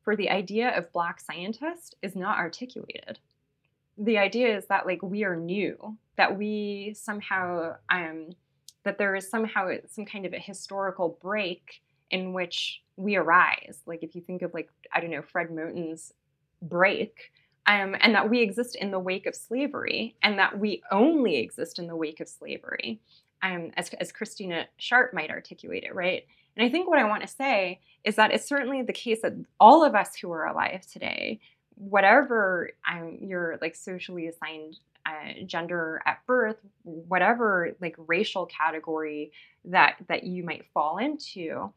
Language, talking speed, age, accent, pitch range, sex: English, 170 wpm, 20-39, American, 160-210 Hz, female